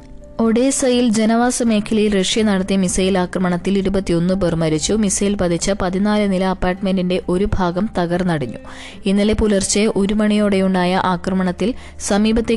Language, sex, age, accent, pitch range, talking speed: Malayalam, female, 20-39, native, 185-210 Hz, 115 wpm